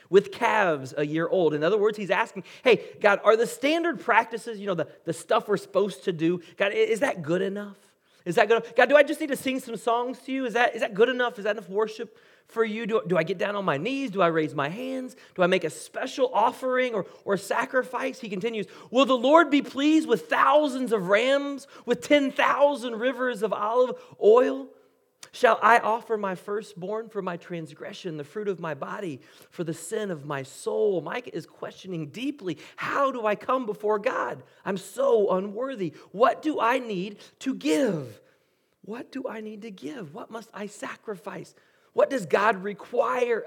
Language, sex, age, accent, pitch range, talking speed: English, male, 30-49, American, 190-260 Hz, 205 wpm